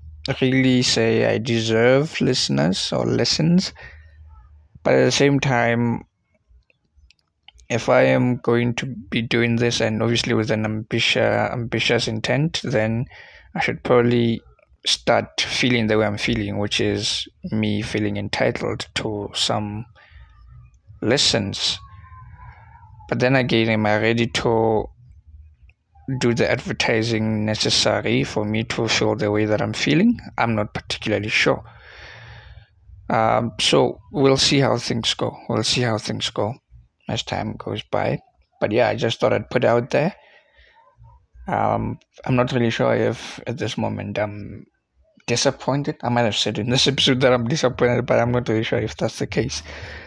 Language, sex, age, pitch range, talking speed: English, male, 20-39, 105-125 Hz, 150 wpm